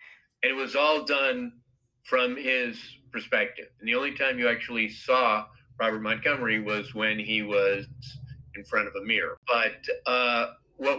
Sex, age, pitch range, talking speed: male, 50-69, 115-140 Hz, 160 wpm